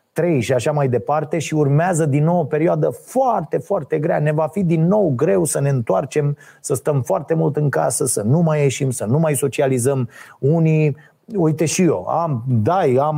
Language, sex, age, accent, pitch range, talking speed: Romanian, male, 30-49, native, 120-170 Hz, 200 wpm